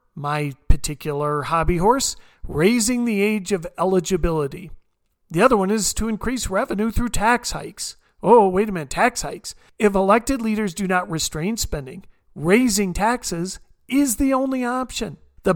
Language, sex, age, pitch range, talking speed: English, male, 40-59, 175-220 Hz, 150 wpm